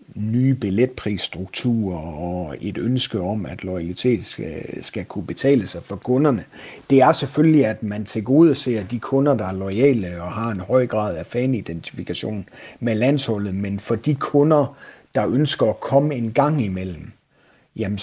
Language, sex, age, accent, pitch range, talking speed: Danish, male, 60-79, native, 100-125 Hz, 160 wpm